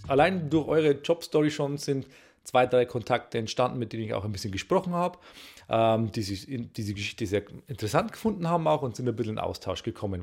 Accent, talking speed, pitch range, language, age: German, 205 wpm, 110-150 Hz, German, 30-49